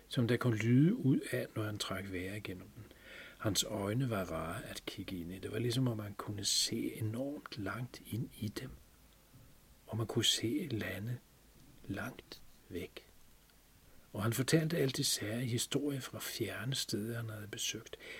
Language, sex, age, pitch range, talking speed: Danish, male, 40-59, 95-125 Hz, 170 wpm